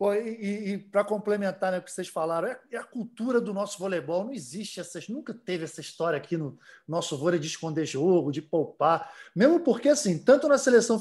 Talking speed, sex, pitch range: 205 wpm, male, 180-225 Hz